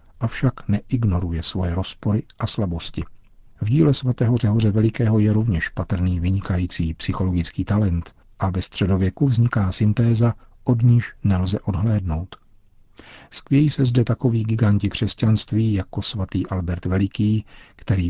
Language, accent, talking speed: Czech, native, 125 wpm